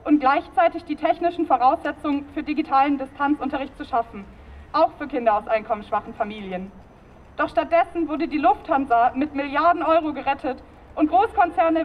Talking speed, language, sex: 135 wpm, German, female